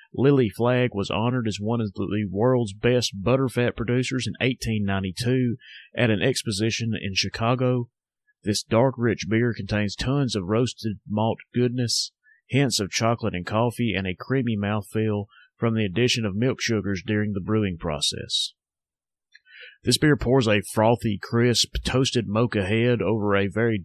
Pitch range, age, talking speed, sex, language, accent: 100-120 Hz, 30-49, 150 wpm, male, English, American